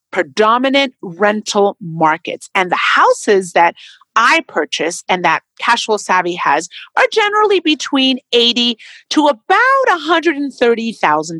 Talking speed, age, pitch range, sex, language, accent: 130 wpm, 40-59, 210-335 Hz, female, English, American